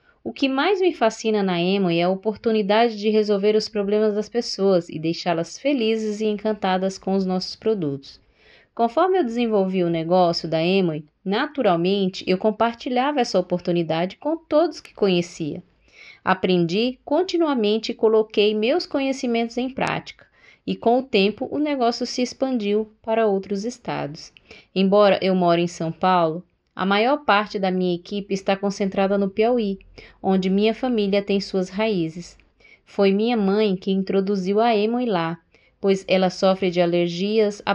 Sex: female